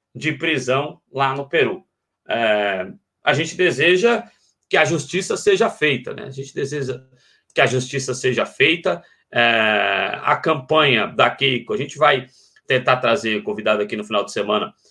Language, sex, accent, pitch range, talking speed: Portuguese, male, Brazilian, 120-145 Hz, 160 wpm